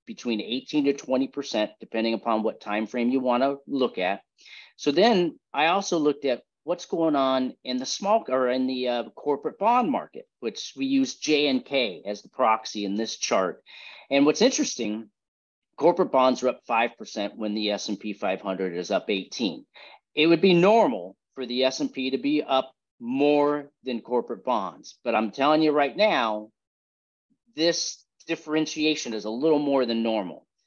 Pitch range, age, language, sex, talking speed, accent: 125-195 Hz, 40-59, English, male, 185 wpm, American